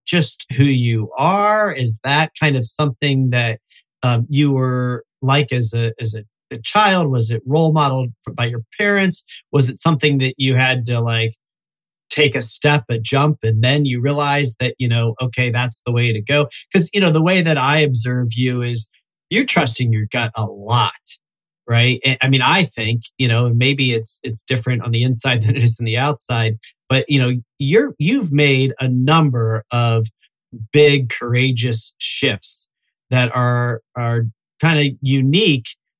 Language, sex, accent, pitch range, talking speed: English, male, American, 115-145 Hz, 180 wpm